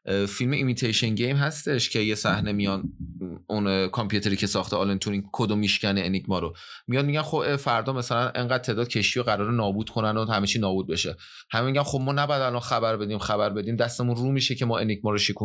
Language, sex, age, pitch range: Persian, male, 30-49, 105-145 Hz